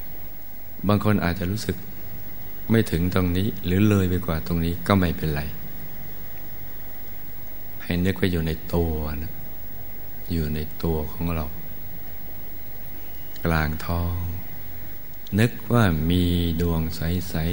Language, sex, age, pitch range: Thai, male, 60-79, 80-95 Hz